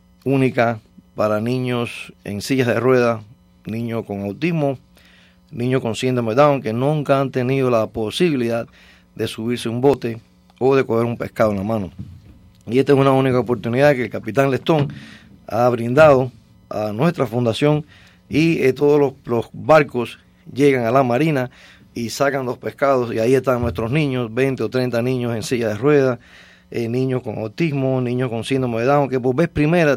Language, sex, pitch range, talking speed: English, male, 115-140 Hz, 170 wpm